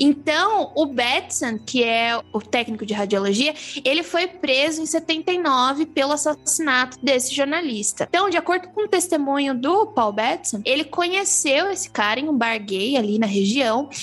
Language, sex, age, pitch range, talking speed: Portuguese, female, 20-39, 230-325 Hz, 165 wpm